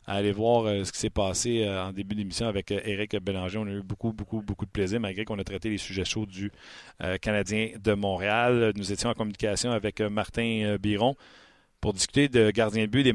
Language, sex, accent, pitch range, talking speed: French, male, Canadian, 100-115 Hz, 210 wpm